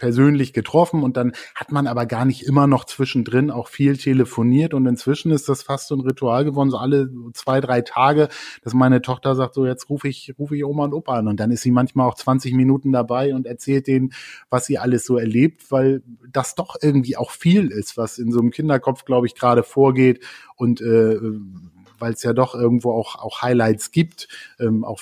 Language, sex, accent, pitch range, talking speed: German, male, German, 120-140 Hz, 210 wpm